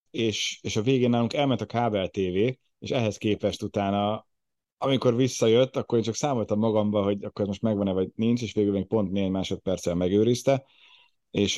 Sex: male